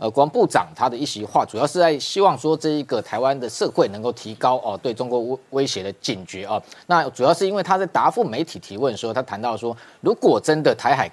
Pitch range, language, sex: 120-155 Hz, Chinese, male